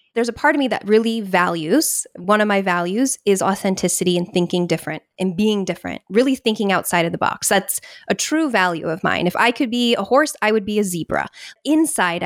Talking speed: 215 wpm